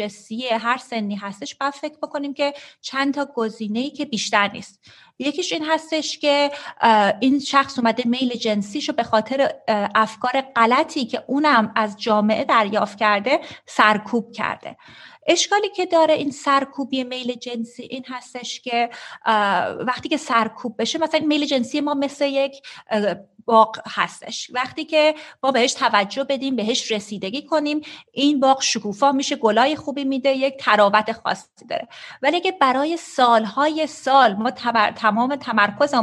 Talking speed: 140 wpm